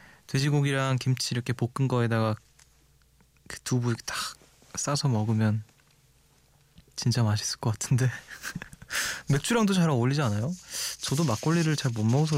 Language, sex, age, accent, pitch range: Korean, male, 20-39, native, 115-145 Hz